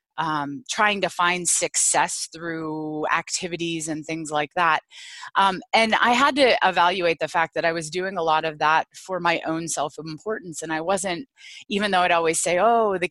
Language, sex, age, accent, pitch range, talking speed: English, female, 20-39, American, 160-195 Hz, 190 wpm